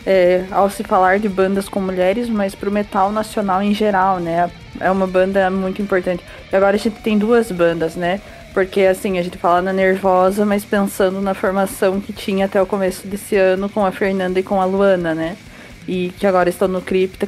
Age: 20-39